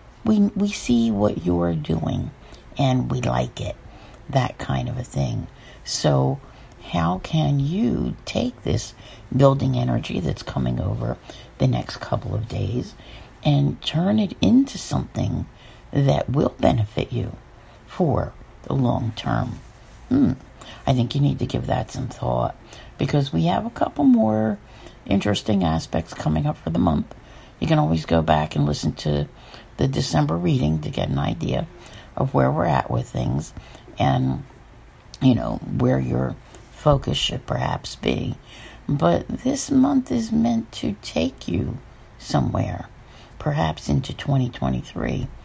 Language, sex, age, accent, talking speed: English, female, 60-79, American, 145 wpm